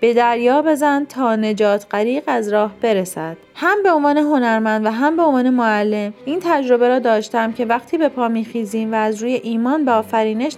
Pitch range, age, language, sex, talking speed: 215-280 Hz, 30-49, Persian, female, 185 wpm